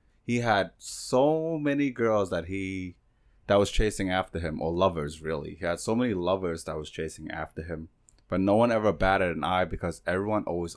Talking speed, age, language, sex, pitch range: 195 wpm, 30-49, English, male, 80-105 Hz